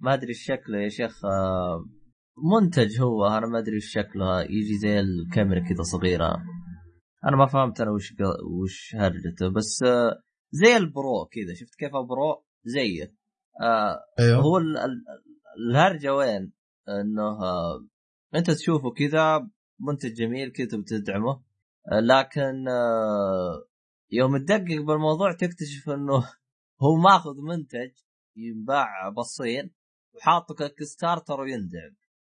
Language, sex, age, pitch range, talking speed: Arabic, male, 20-39, 105-140 Hz, 105 wpm